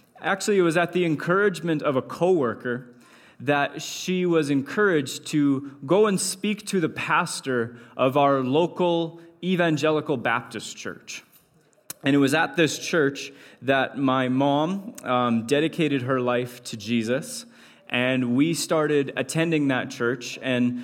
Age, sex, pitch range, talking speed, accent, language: 20-39, male, 120-155 Hz, 140 wpm, American, English